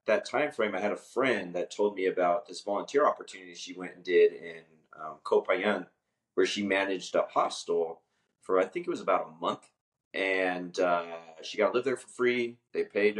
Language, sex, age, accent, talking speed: English, male, 30-49, American, 205 wpm